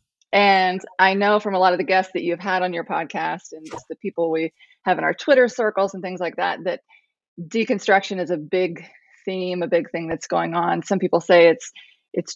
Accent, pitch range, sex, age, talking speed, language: American, 170-210 Hz, female, 20-39, 225 wpm, English